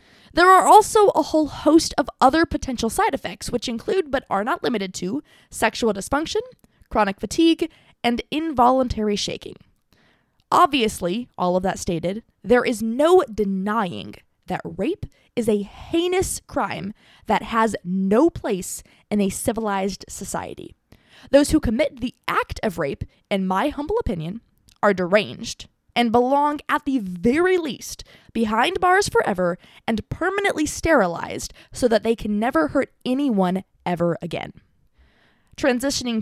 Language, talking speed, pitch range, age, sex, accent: English, 135 wpm, 205-315 Hz, 20-39, female, American